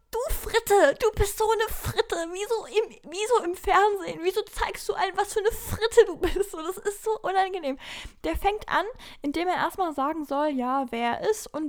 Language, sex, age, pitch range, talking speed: German, female, 10-29, 255-380 Hz, 205 wpm